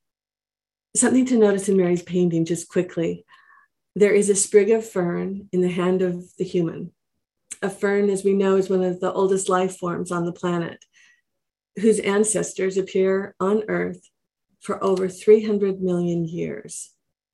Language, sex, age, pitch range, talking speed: English, female, 50-69, 175-200 Hz, 155 wpm